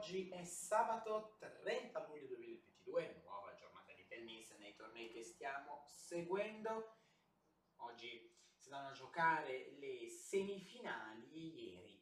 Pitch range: 130-205 Hz